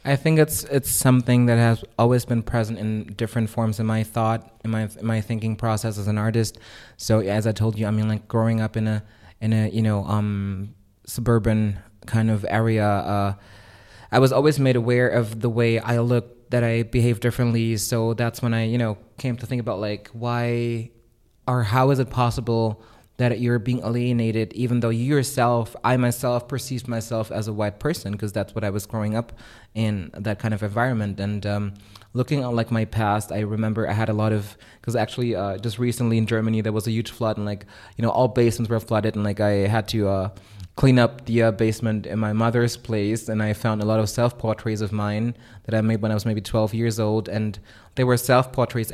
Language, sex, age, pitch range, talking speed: French, male, 20-39, 110-120 Hz, 220 wpm